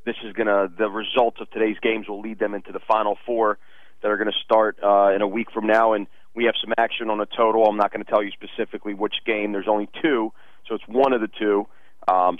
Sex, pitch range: male, 105-125 Hz